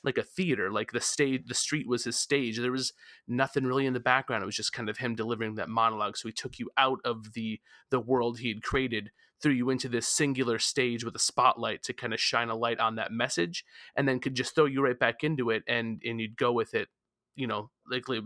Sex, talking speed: male, 255 wpm